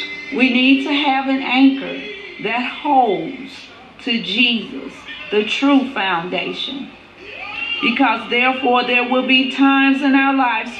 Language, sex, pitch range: English, female, 225-275 Hz